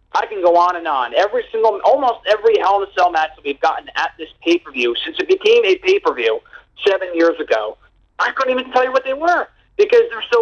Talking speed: 230 wpm